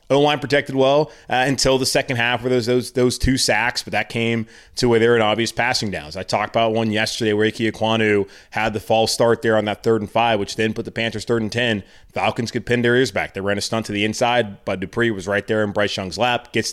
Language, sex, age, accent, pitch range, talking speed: English, male, 20-39, American, 100-120 Hz, 260 wpm